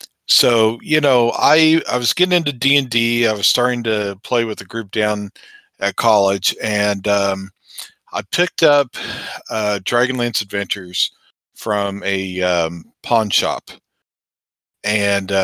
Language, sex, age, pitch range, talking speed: English, male, 50-69, 95-125 Hz, 130 wpm